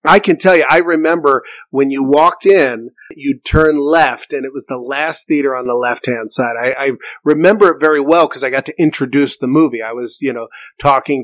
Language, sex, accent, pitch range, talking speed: English, male, American, 130-160 Hz, 225 wpm